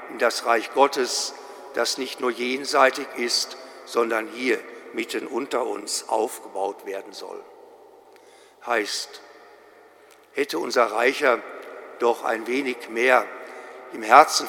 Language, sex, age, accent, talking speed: German, male, 60-79, German, 110 wpm